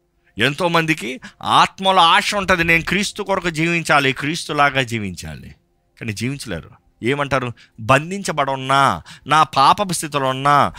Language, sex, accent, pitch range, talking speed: Telugu, male, native, 135-220 Hz, 105 wpm